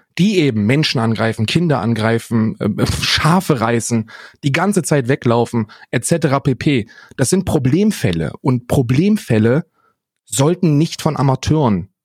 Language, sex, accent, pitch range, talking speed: German, male, German, 120-155 Hz, 115 wpm